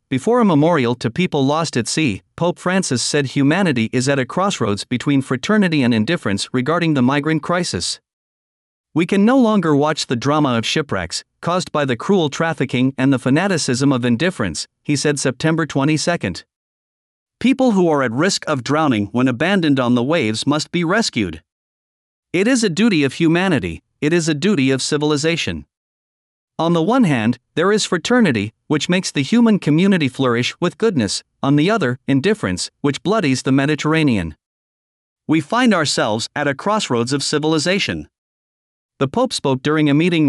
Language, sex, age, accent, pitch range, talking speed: English, male, 50-69, American, 130-170 Hz, 165 wpm